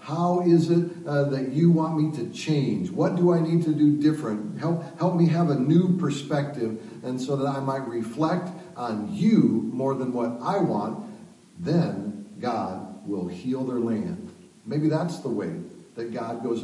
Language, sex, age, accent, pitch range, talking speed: English, male, 50-69, American, 120-155 Hz, 180 wpm